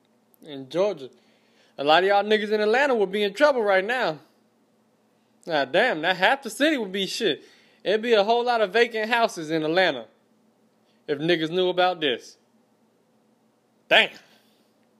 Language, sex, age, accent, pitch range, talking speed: English, male, 20-39, American, 170-235 Hz, 160 wpm